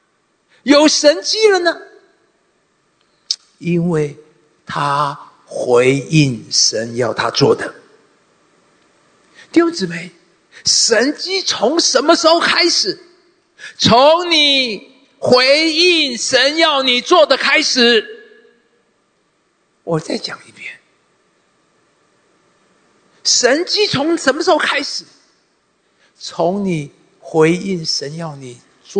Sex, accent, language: male, Chinese, English